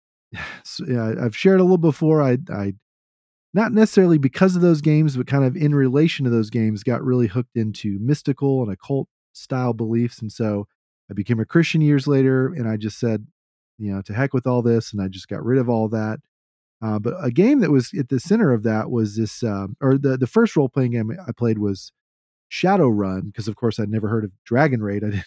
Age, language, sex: 40-59, English, male